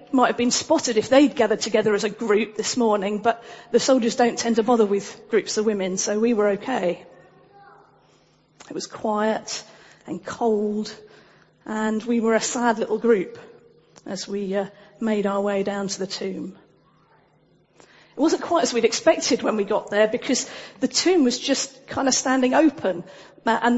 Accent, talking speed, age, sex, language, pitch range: British, 175 wpm, 40-59, female, English, 205-270 Hz